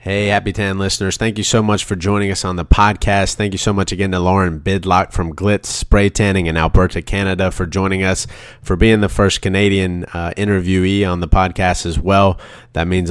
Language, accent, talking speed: English, American, 210 wpm